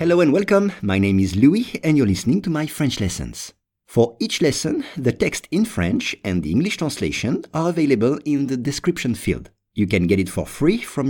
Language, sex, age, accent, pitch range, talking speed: English, male, 50-69, French, 110-175 Hz, 205 wpm